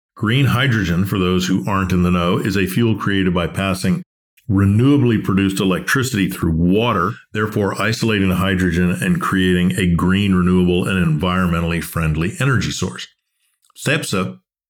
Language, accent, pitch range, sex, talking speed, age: English, American, 90-110 Hz, male, 145 wpm, 50-69